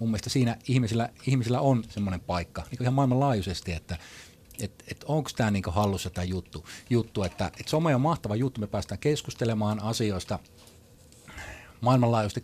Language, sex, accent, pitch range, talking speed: Finnish, male, native, 95-125 Hz, 150 wpm